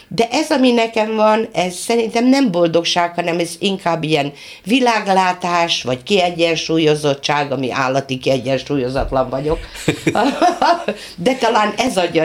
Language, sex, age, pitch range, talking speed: Hungarian, female, 50-69, 140-225 Hz, 120 wpm